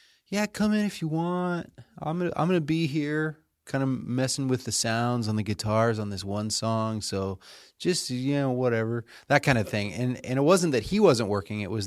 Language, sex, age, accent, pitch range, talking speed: English, male, 30-49, American, 95-120 Hz, 235 wpm